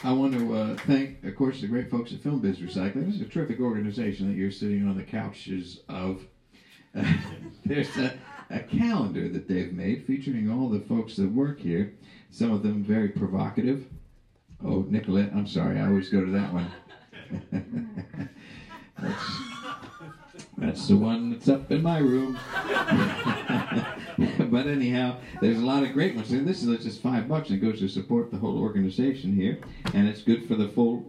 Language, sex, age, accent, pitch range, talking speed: English, male, 50-69, American, 100-135 Hz, 180 wpm